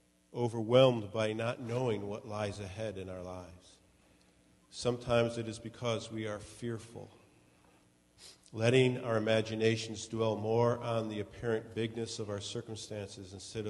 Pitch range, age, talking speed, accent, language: 95-115 Hz, 50-69, 130 wpm, American, English